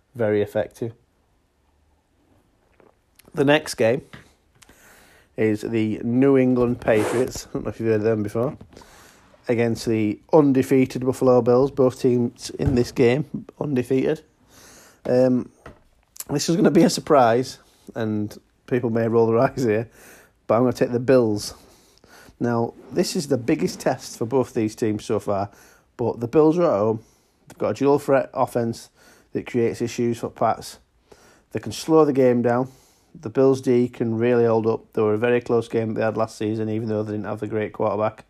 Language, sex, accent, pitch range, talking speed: English, male, British, 110-125 Hz, 175 wpm